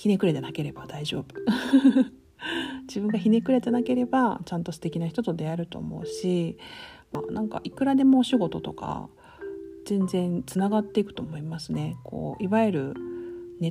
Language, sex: Japanese, female